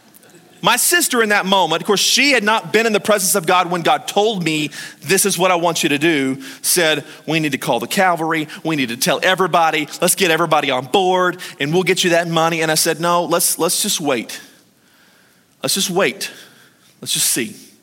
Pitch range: 150-190 Hz